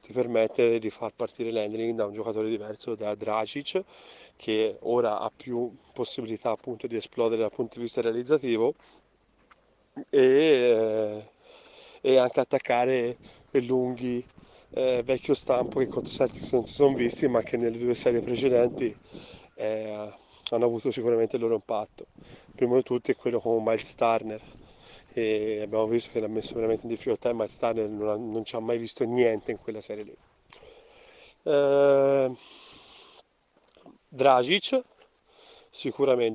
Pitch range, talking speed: 115-140 Hz, 145 wpm